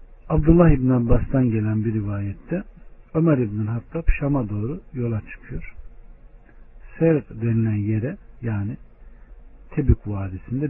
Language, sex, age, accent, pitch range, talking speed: Turkish, male, 60-79, native, 110-145 Hz, 105 wpm